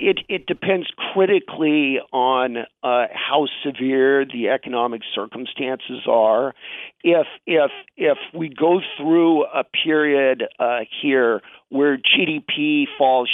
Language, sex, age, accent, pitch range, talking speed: English, male, 50-69, American, 125-180 Hz, 110 wpm